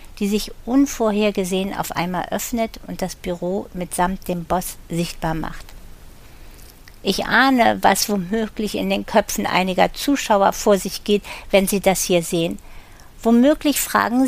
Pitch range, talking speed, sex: 185-225 Hz, 140 wpm, female